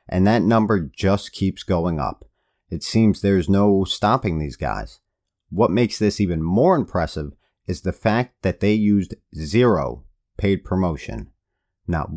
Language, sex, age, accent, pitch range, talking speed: English, male, 40-59, American, 85-105 Hz, 150 wpm